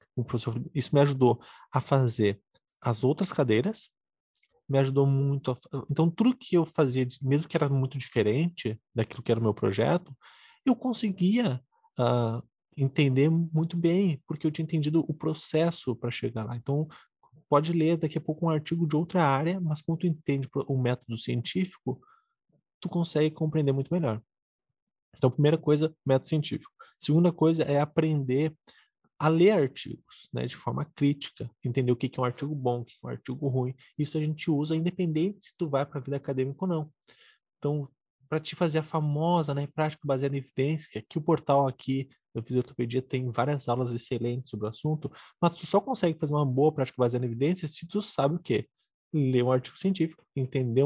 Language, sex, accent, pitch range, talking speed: Portuguese, male, Brazilian, 130-165 Hz, 180 wpm